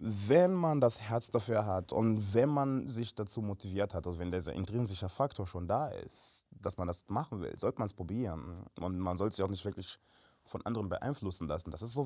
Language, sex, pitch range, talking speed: German, male, 95-140 Hz, 220 wpm